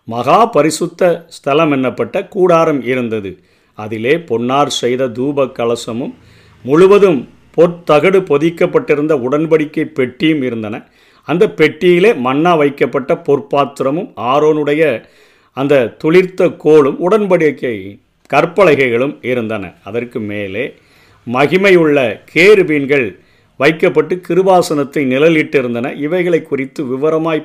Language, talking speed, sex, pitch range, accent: Tamil, 75 wpm, male, 130-170 Hz, native